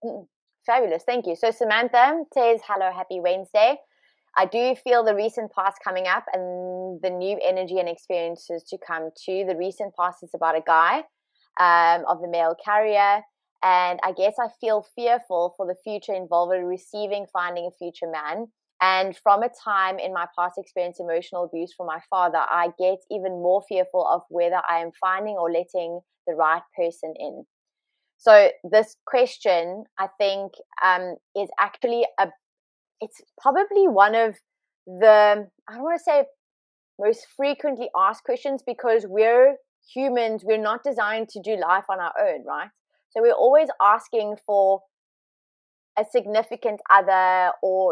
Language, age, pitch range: English, 20-39, 180-230 Hz